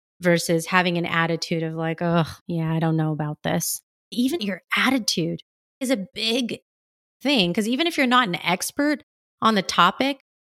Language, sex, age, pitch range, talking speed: English, female, 30-49, 175-235 Hz, 170 wpm